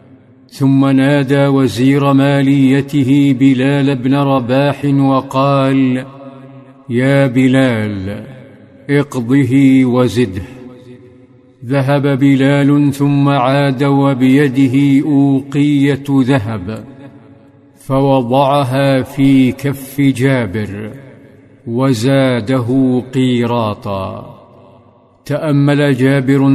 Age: 50-69